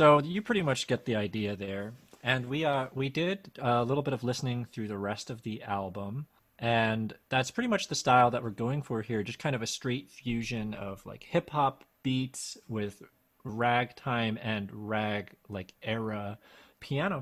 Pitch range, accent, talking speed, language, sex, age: 105-135 Hz, American, 180 wpm, English, male, 30-49